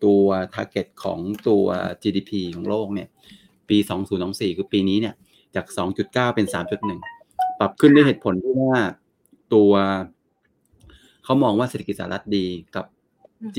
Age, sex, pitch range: 30-49, male, 100-115 Hz